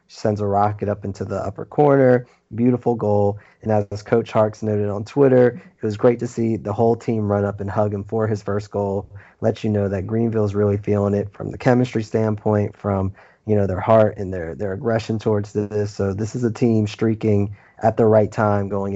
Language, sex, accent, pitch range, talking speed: English, male, American, 100-115 Hz, 215 wpm